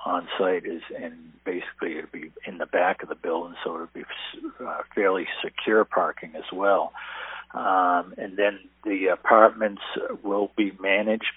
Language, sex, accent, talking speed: English, male, American, 155 wpm